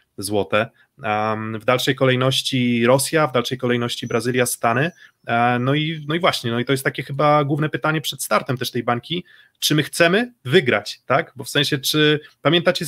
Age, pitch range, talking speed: 20-39, 115-145 Hz, 175 wpm